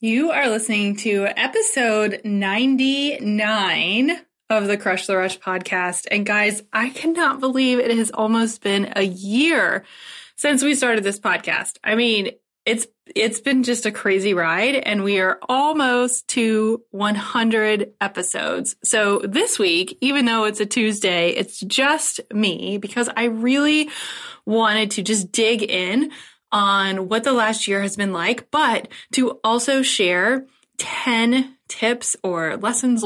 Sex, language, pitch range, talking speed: female, English, 200-260 Hz, 145 wpm